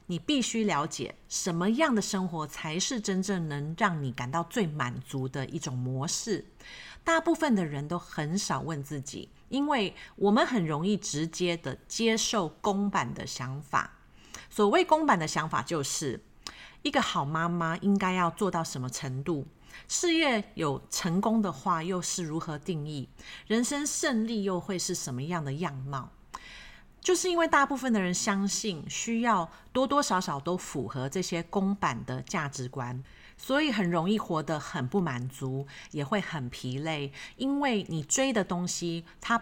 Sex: female